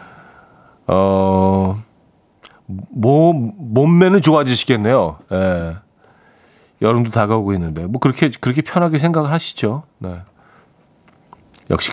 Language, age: Korean, 40-59